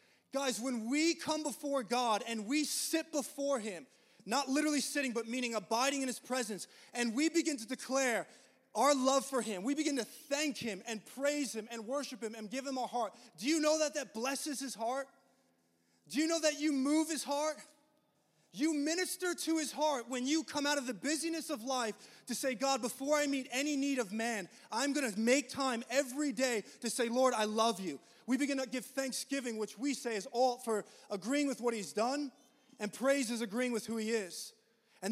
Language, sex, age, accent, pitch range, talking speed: English, male, 20-39, American, 230-285 Hz, 210 wpm